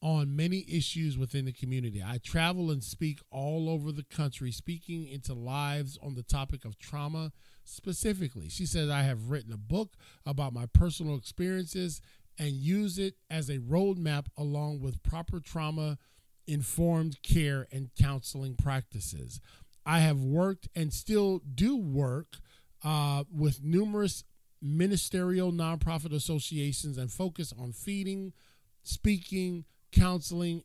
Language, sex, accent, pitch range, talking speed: English, male, American, 135-175 Hz, 135 wpm